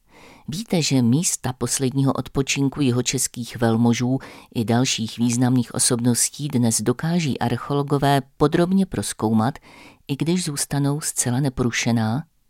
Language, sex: Czech, female